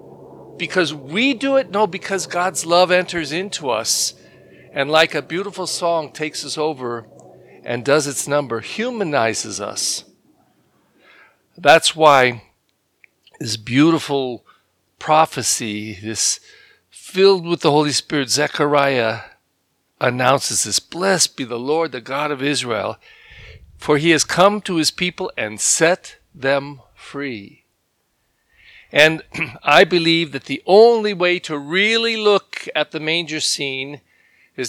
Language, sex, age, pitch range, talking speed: English, male, 50-69, 130-175 Hz, 125 wpm